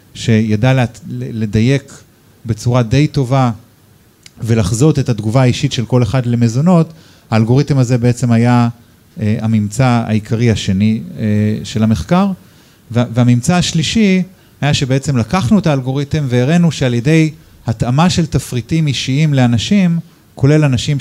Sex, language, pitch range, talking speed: male, Hebrew, 115-145 Hz, 110 wpm